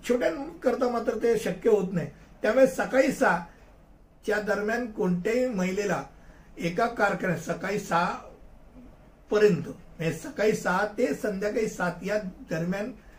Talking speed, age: 85 wpm, 60-79